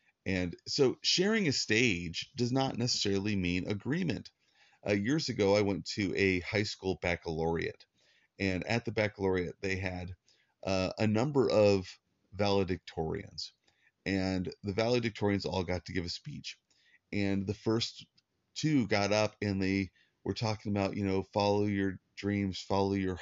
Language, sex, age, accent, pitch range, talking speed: English, male, 30-49, American, 90-110 Hz, 150 wpm